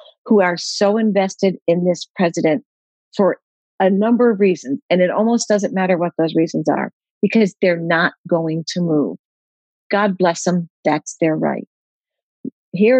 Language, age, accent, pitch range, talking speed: English, 50-69, American, 175-210 Hz, 155 wpm